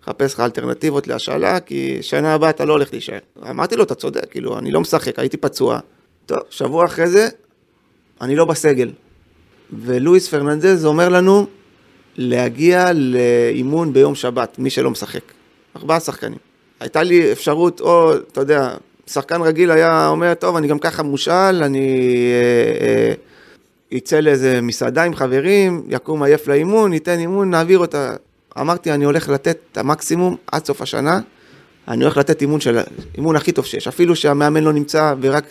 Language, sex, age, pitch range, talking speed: Hebrew, male, 30-49, 135-175 Hz, 160 wpm